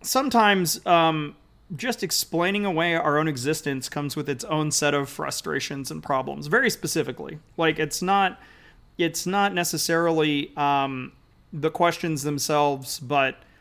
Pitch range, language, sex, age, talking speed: 140-175 Hz, English, male, 30-49, 130 wpm